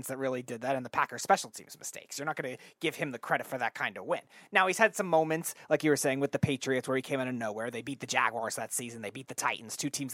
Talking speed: 315 wpm